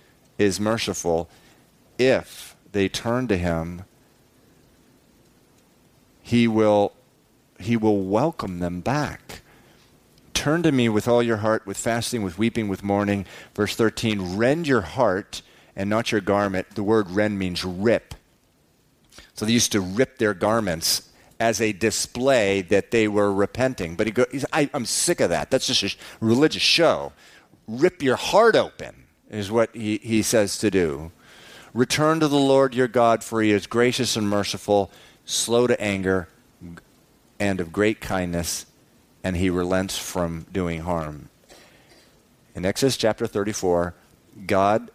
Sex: male